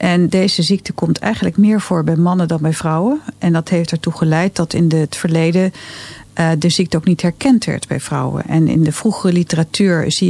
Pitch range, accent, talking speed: 160-185 Hz, Dutch, 205 wpm